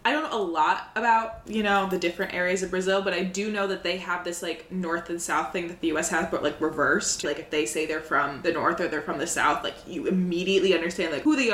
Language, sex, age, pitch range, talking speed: English, female, 20-39, 170-210 Hz, 275 wpm